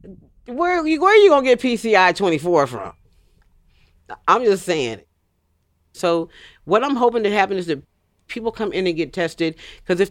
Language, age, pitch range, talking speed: English, 40-59, 120-170 Hz, 165 wpm